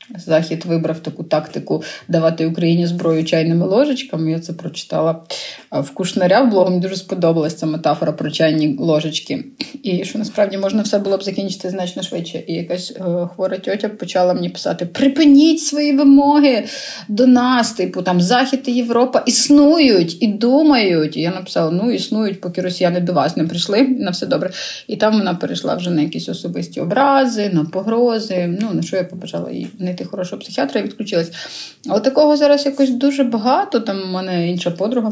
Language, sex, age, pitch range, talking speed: Ukrainian, female, 30-49, 170-230 Hz, 170 wpm